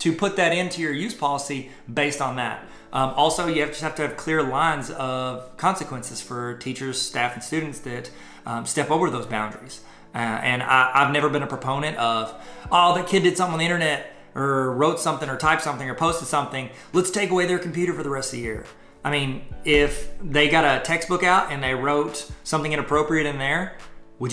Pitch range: 125-160 Hz